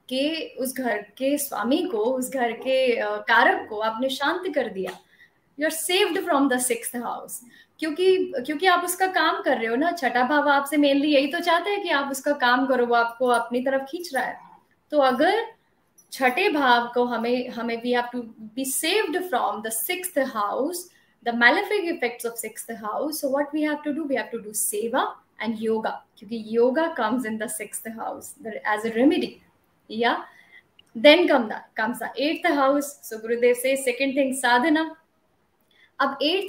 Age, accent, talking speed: 20-39, native, 90 wpm